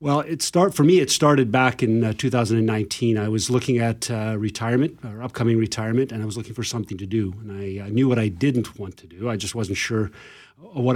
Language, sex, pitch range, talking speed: English, male, 110-125 Hz, 235 wpm